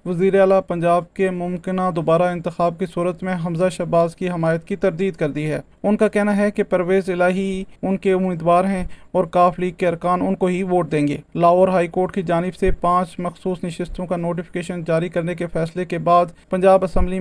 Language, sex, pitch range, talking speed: Urdu, male, 170-185 Hz, 205 wpm